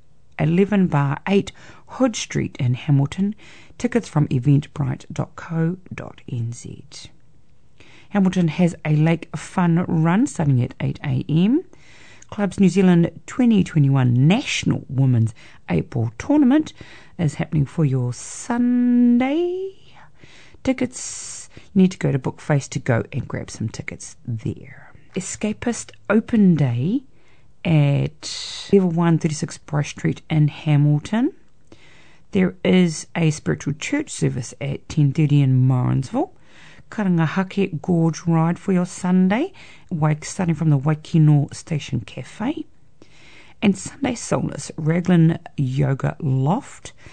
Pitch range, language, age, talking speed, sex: 140-190 Hz, English, 40-59, 110 wpm, female